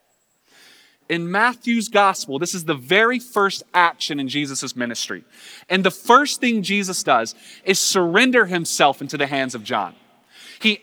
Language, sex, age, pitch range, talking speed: English, male, 20-39, 145-215 Hz, 150 wpm